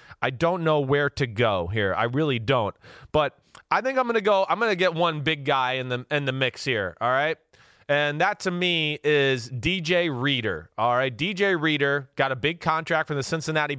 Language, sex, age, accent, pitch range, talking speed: English, male, 30-49, American, 145-175 Hz, 220 wpm